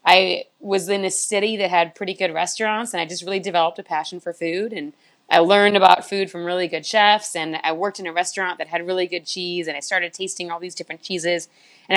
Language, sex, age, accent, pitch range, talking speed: English, female, 30-49, American, 170-200 Hz, 240 wpm